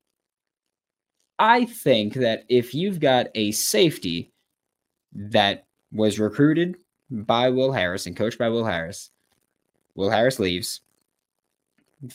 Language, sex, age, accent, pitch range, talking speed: English, male, 20-39, American, 100-140 Hz, 115 wpm